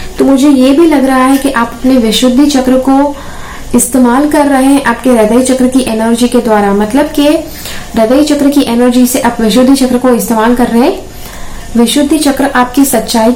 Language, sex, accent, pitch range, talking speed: English, female, Indian, 235-270 Hz, 195 wpm